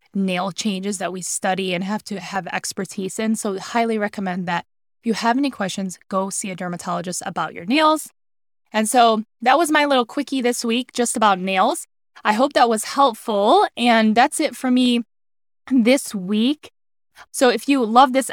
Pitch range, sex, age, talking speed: 200-245 Hz, female, 10-29, 185 wpm